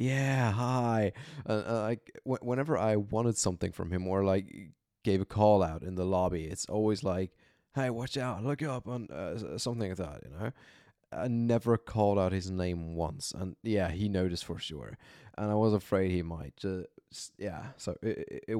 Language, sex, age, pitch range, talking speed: English, male, 20-39, 90-110 Hz, 175 wpm